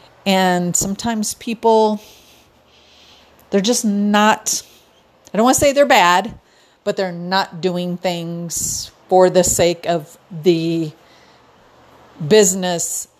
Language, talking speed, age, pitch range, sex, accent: English, 110 wpm, 40-59, 175-210 Hz, female, American